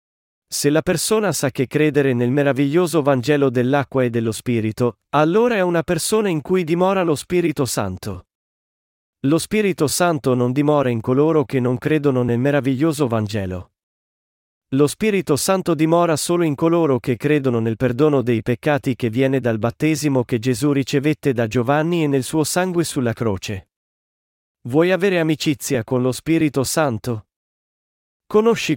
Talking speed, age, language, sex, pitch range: 150 wpm, 40-59, Italian, male, 125-160 Hz